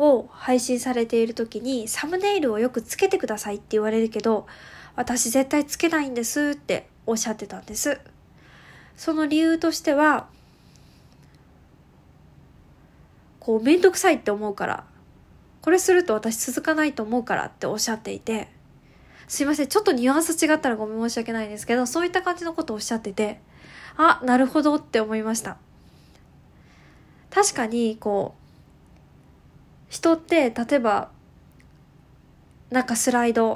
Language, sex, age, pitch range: Japanese, female, 20-39, 225-315 Hz